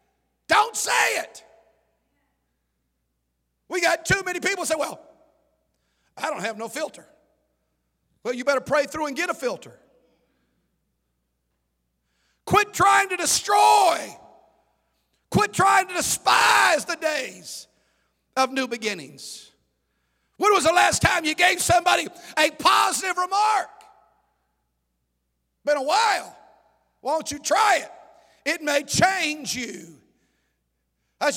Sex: male